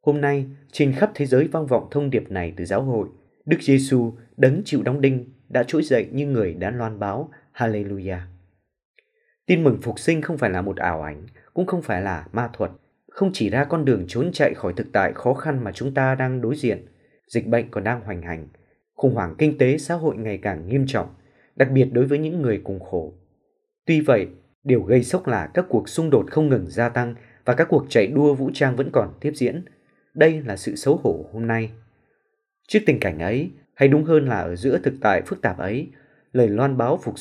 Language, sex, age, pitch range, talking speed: Vietnamese, male, 20-39, 110-145 Hz, 225 wpm